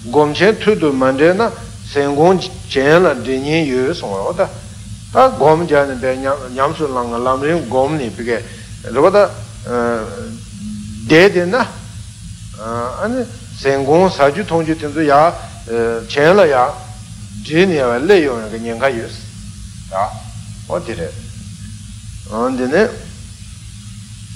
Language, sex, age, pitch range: Italian, male, 60-79, 105-145 Hz